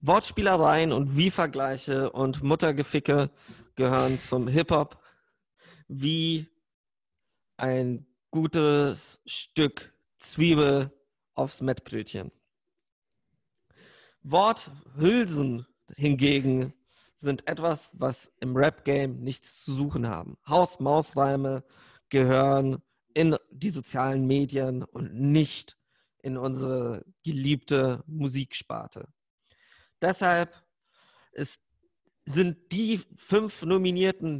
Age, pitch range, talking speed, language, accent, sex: 40-59, 135-165 Hz, 75 wpm, German, German, male